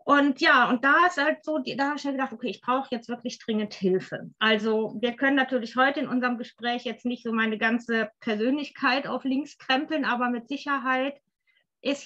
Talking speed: 200 wpm